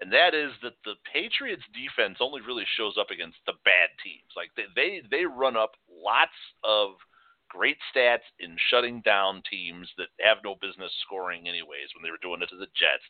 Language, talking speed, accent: English, 195 wpm, American